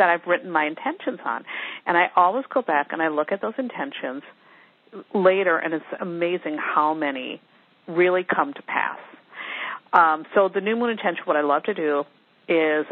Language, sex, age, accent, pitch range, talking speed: English, female, 50-69, American, 155-200 Hz, 180 wpm